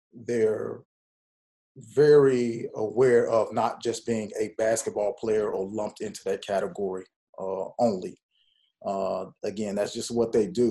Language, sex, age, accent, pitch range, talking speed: English, male, 30-49, American, 105-120 Hz, 135 wpm